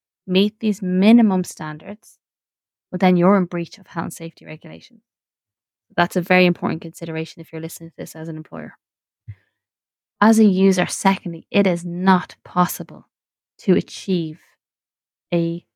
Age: 20-39